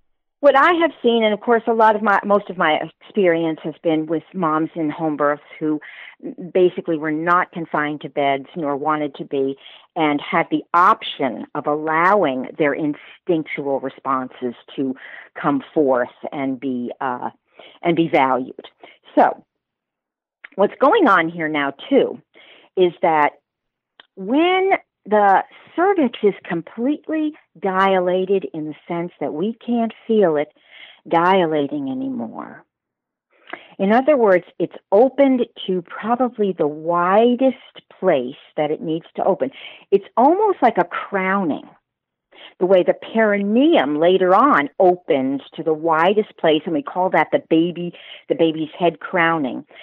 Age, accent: 50-69, American